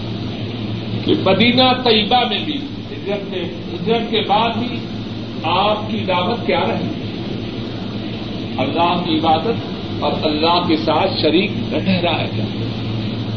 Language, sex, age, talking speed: Urdu, male, 50-69, 95 wpm